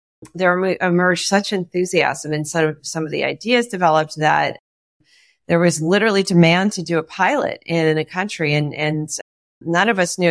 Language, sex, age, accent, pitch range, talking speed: English, female, 40-59, American, 155-190 Hz, 165 wpm